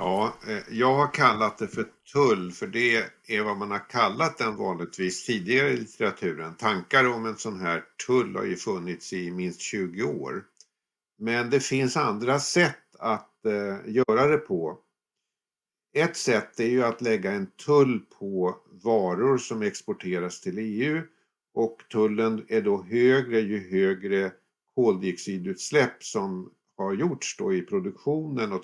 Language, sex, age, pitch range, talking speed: English, male, 50-69, 105-145 Hz, 150 wpm